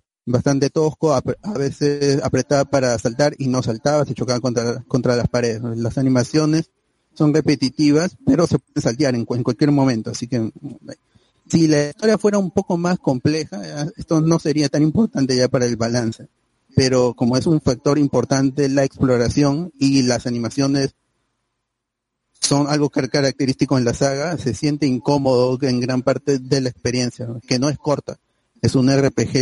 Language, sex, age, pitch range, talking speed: Spanish, male, 40-59, 125-150 Hz, 165 wpm